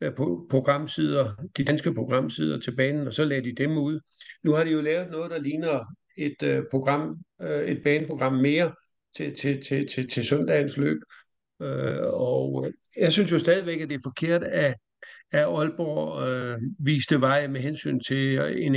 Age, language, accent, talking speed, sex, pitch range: 60-79, Danish, native, 175 wpm, male, 130-150 Hz